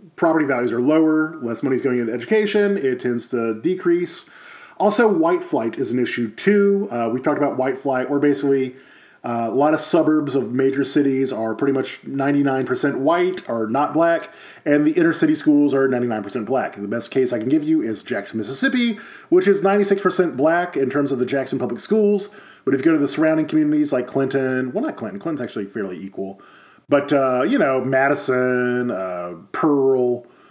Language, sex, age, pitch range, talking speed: English, male, 30-49, 130-200 Hz, 195 wpm